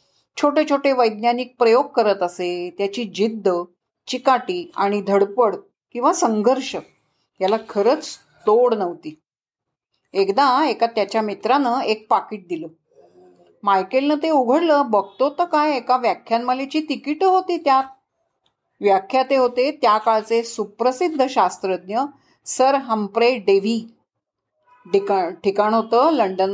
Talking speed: 105 wpm